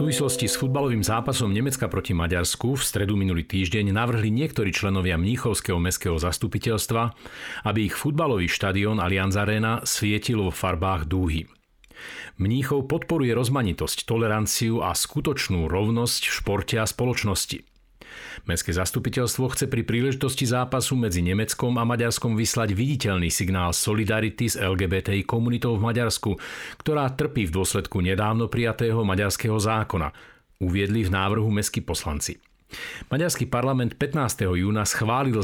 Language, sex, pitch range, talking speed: Slovak, male, 95-125 Hz, 130 wpm